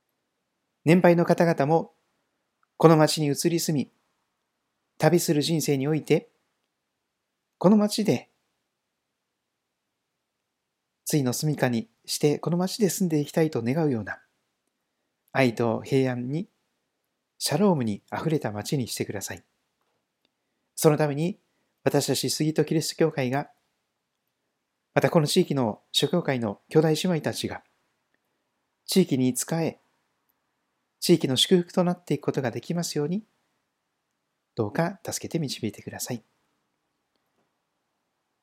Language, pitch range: Japanese, 135-170 Hz